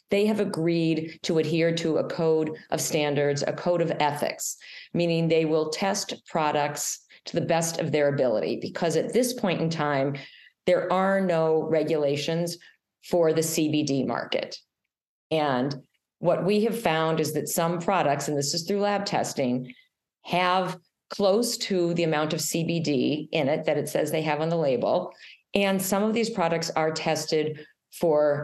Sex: female